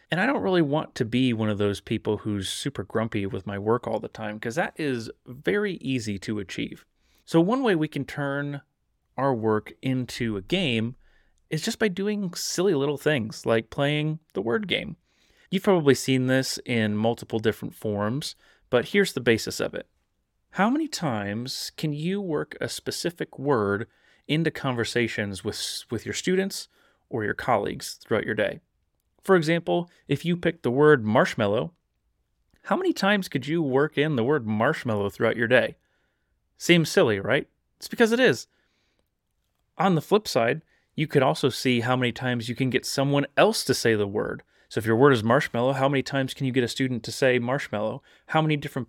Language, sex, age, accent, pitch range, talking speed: English, male, 30-49, American, 115-170 Hz, 190 wpm